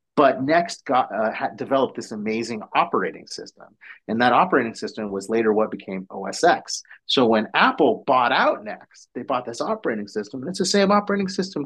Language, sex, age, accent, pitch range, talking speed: English, male, 30-49, American, 110-145 Hz, 185 wpm